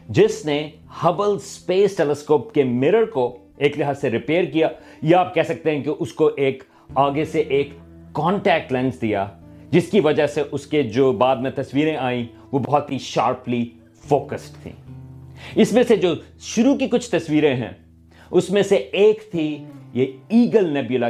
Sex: male